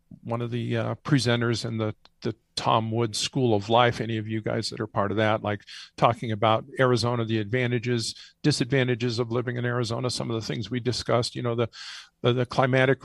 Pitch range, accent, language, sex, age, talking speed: 115-130 Hz, American, English, male, 50-69, 205 wpm